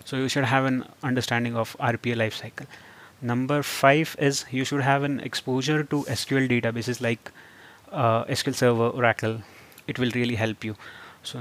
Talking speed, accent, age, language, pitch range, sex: 170 wpm, native, 30-49, Hindi, 115-135 Hz, male